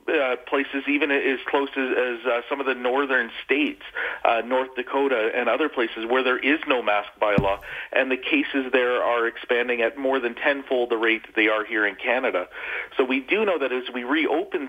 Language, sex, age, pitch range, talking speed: English, male, 40-59, 115-145 Hz, 200 wpm